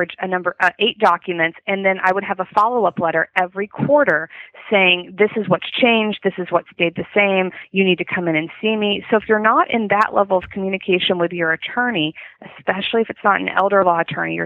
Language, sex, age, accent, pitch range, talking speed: English, female, 30-49, American, 175-220 Hz, 235 wpm